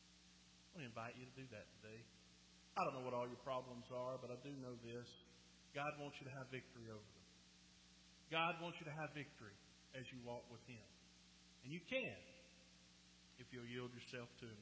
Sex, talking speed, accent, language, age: male, 200 wpm, American, English, 50-69